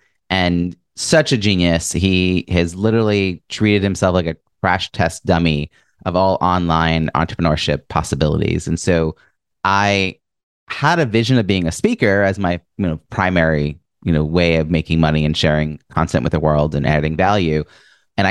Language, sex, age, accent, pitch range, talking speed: English, male, 30-49, American, 85-105 Hz, 165 wpm